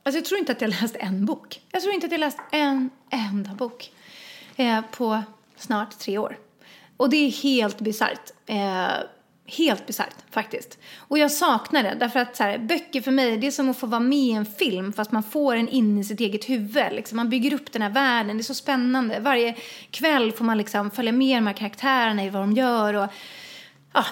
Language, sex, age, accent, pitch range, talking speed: English, female, 30-49, Swedish, 220-280 Hz, 220 wpm